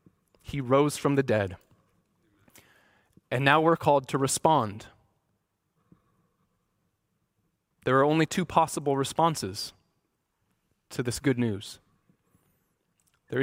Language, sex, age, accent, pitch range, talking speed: English, male, 20-39, American, 130-175 Hz, 100 wpm